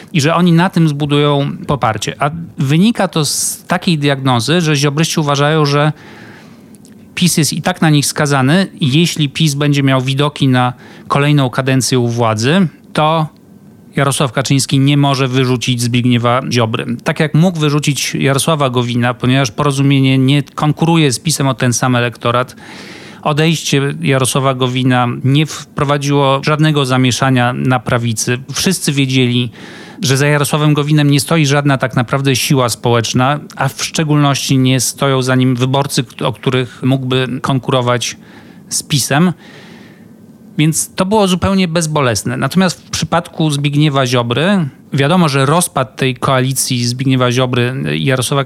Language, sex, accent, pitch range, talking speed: Polish, male, native, 130-160 Hz, 140 wpm